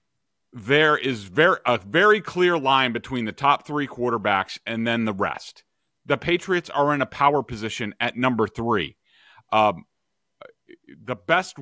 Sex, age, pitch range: male, 40-59, 120-165 Hz